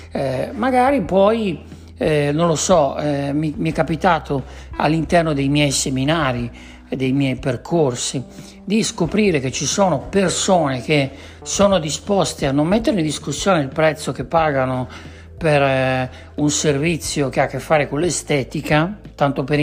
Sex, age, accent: male, 60-79, native